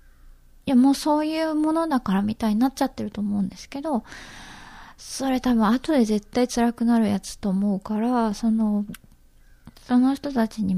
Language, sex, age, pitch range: Japanese, female, 20-39, 205-250 Hz